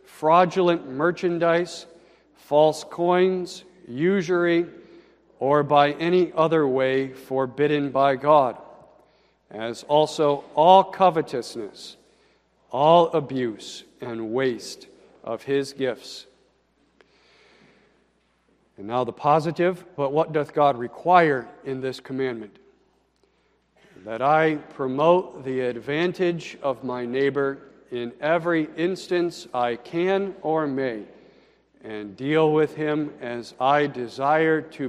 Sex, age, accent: male, 50-69, American